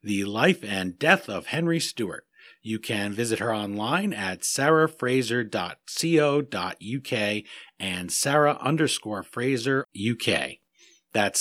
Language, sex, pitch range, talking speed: English, male, 115-160 Hz, 105 wpm